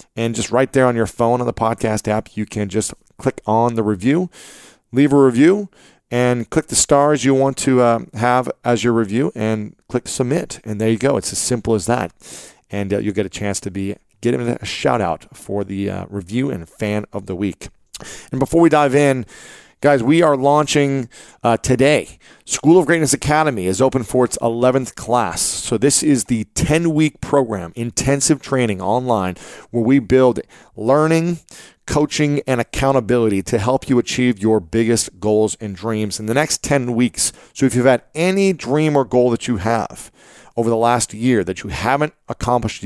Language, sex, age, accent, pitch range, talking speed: English, male, 40-59, American, 110-140 Hz, 190 wpm